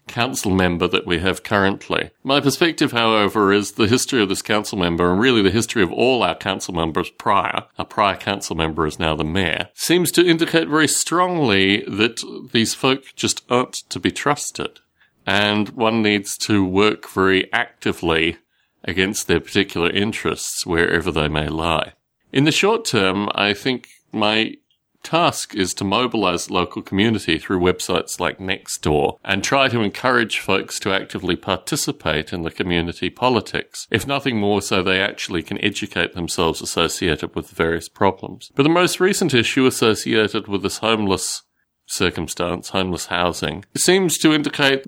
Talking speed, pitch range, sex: 165 wpm, 95-130 Hz, male